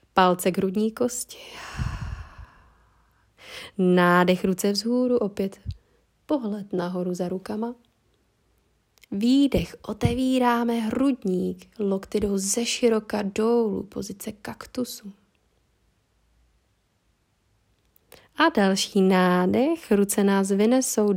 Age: 20-39